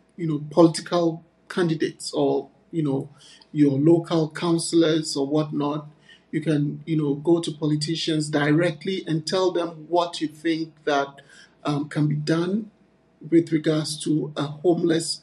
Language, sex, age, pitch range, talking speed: English, male, 50-69, 150-170 Hz, 140 wpm